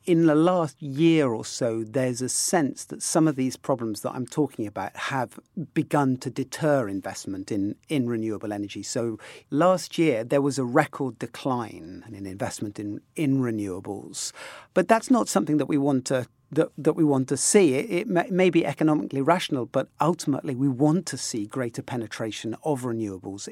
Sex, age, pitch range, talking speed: male, 50-69, 120-155 Hz, 185 wpm